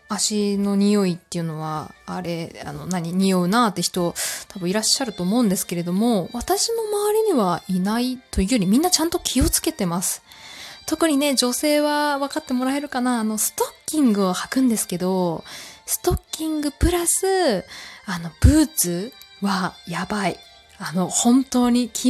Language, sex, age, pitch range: Japanese, female, 20-39, 185-290 Hz